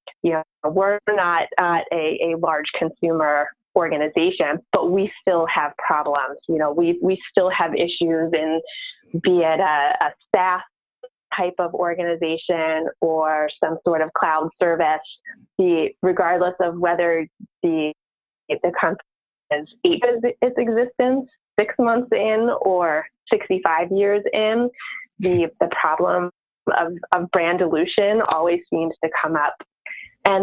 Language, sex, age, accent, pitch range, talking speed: English, female, 20-39, American, 165-210 Hz, 140 wpm